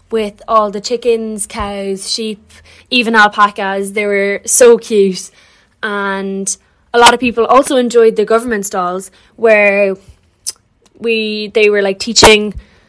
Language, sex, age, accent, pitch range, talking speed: English, female, 20-39, Irish, 200-230 Hz, 130 wpm